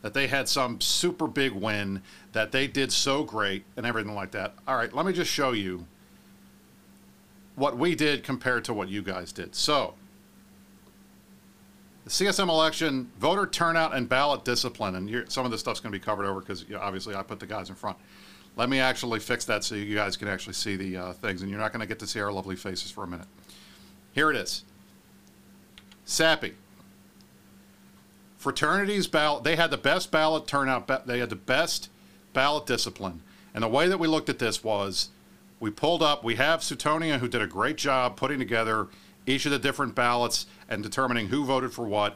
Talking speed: 200 wpm